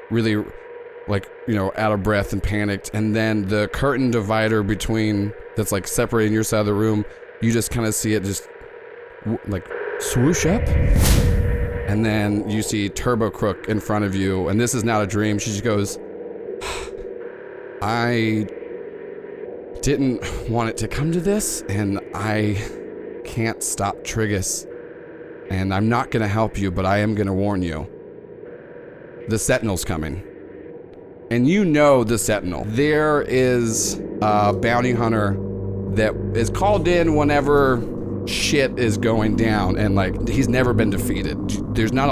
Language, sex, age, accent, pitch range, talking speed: English, male, 30-49, American, 105-125 Hz, 150 wpm